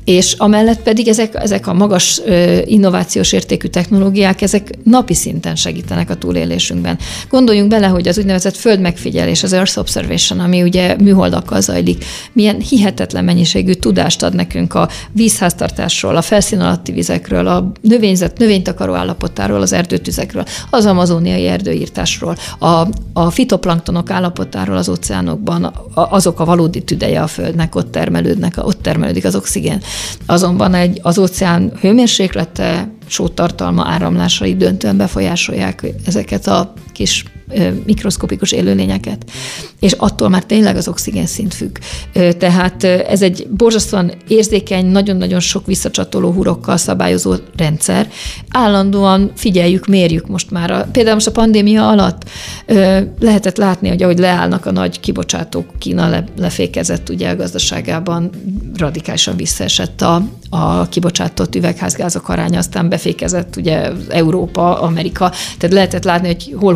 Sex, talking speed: female, 125 wpm